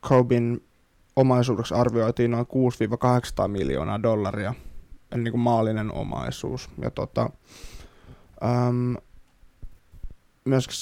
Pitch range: 115-125 Hz